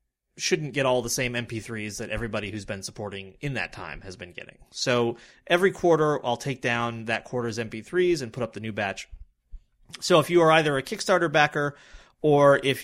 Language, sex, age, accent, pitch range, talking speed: English, male, 30-49, American, 110-140 Hz, 195 wpm